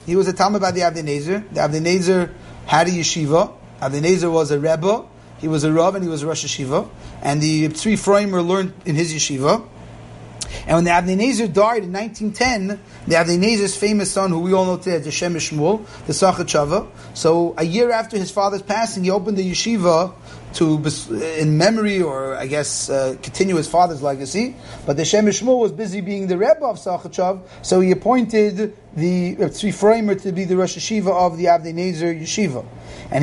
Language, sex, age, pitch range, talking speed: English, male, 30-49, 160-200 Hz, 195 wpm